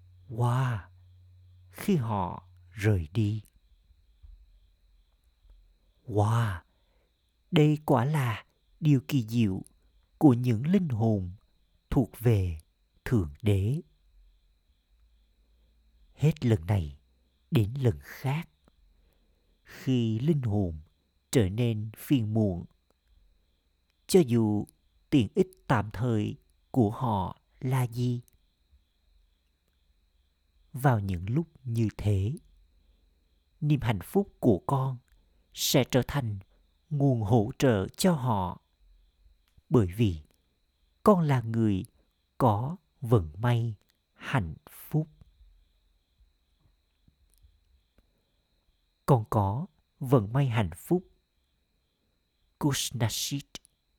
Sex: male